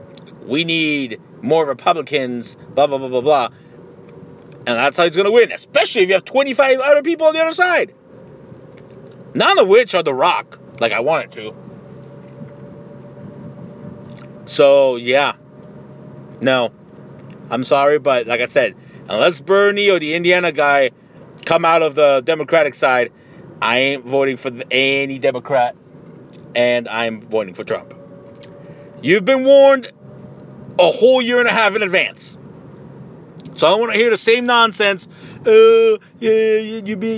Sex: male